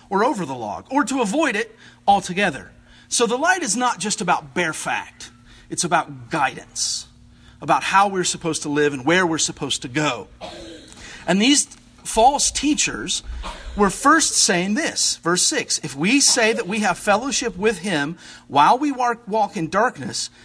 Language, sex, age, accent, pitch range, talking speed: English, male, 40-59, American, 160-240 Hz, 165 wpm